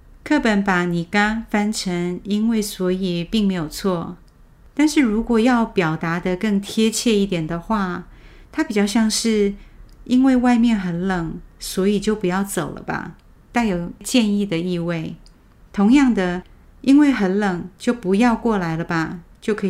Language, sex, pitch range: Chinese, female, 175-230 Hz